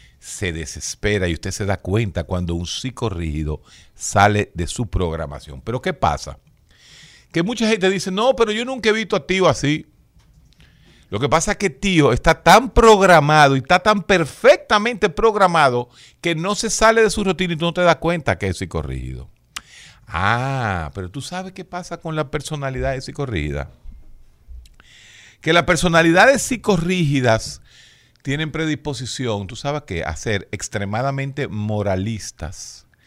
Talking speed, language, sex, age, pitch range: 155 wpm, Spanish, male, 50-69, 95-160 Hz